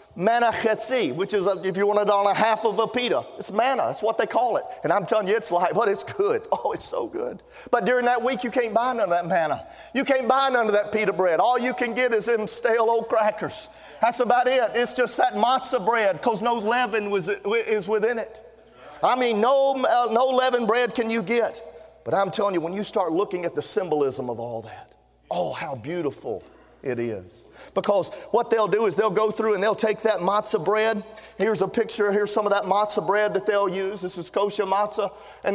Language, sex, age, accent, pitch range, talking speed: English, male, 40-59, American, 205-240 Hz, 230 wpm